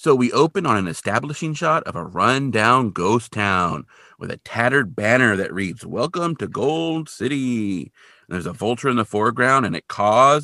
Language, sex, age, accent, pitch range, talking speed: English, male, 40-59, American, 100-150 Hz, 185 wpm